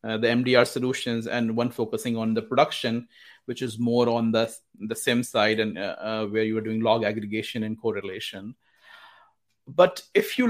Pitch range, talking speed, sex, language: 120-170 Hz, 185 wpm, male, English